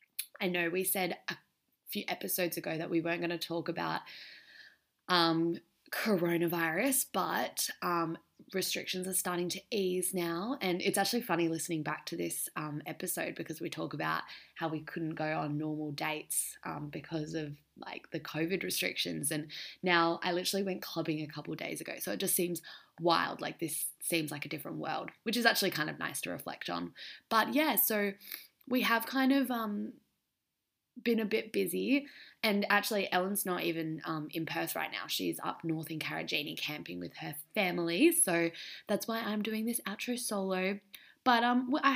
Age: 20-39